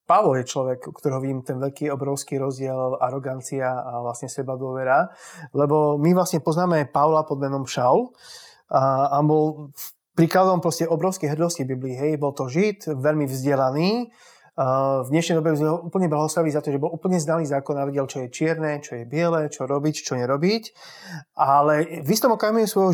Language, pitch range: English, 140-170 Hz